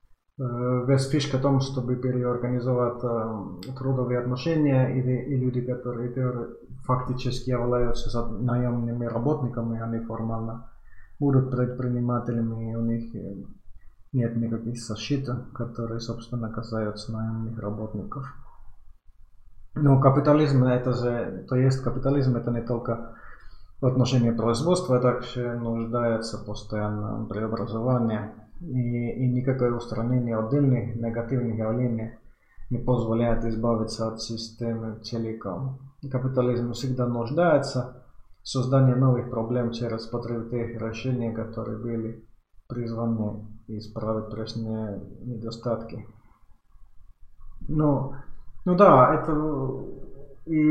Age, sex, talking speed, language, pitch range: 20-39, male, 100 wpm, Finnish, 115-130 Hz